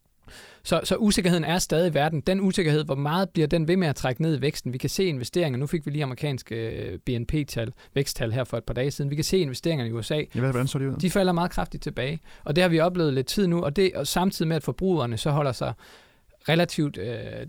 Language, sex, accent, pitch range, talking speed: Danish, male, native, 135-180 Hz, 245 wpm